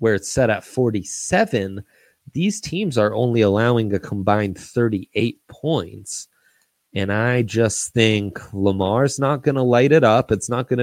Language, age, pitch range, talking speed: English, 30-49, 105-145 Hz, 155 wpm